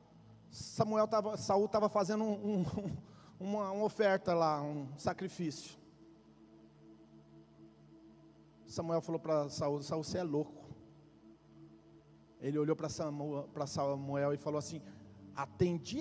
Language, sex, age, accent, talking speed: Portuguese, male, 40-59, Brazilian, 105 wpm